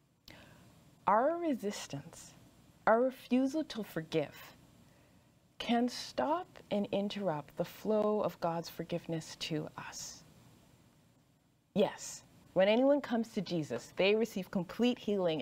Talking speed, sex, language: 105 wpm, female, English